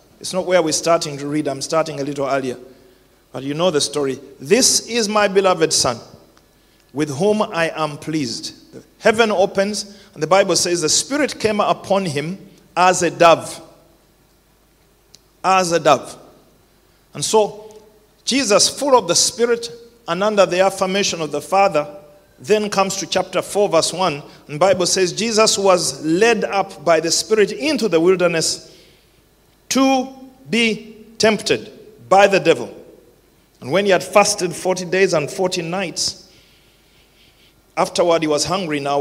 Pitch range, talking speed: 155-200 Hz, 155 wpm